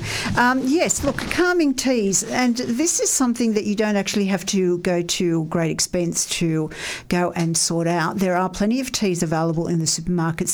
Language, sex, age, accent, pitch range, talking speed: English, female, 50-69, Australian, 175-225 Hz, 190 wpm